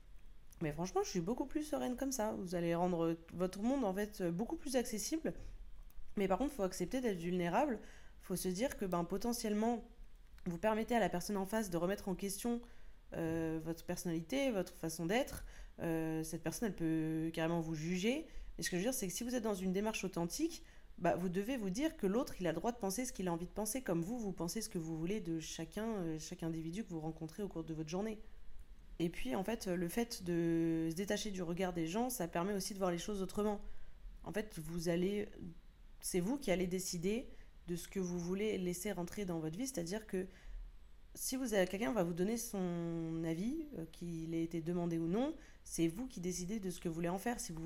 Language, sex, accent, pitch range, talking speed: French, female, French, 170-215 Hz, 230 wpm